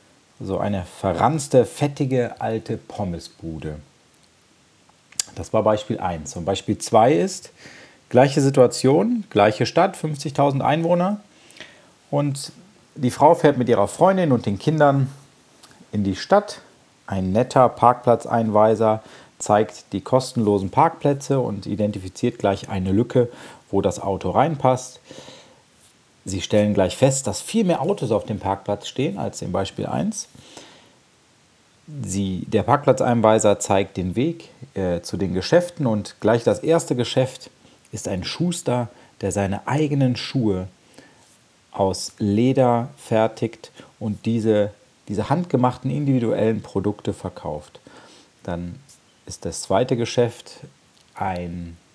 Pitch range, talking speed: 100-140 Hz, 115 wpm